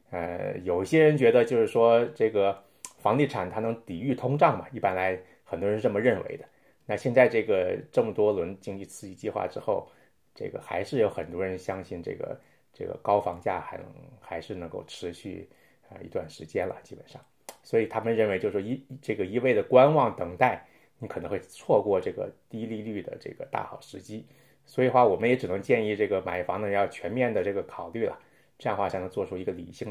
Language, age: Chinese, 20-39